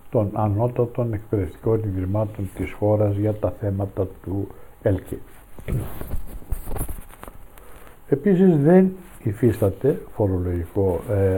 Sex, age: male, 60-79